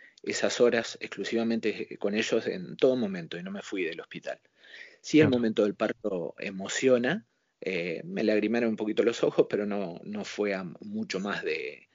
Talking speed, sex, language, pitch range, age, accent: 175 wpm, male, Spanish, 110-160 Hz, 30-49, Argentinian